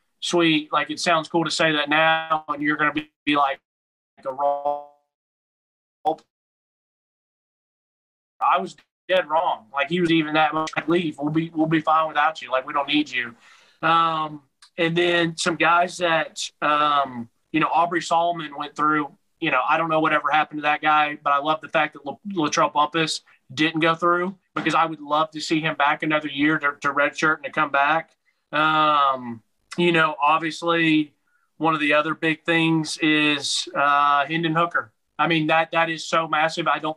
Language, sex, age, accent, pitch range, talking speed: English, male, 30-49, American, 145-170 Hz, 185 wpm